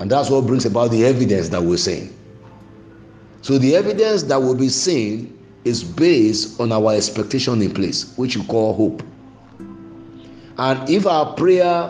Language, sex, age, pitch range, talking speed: English, male, 50-69, 105-135 Hz, 160 wpm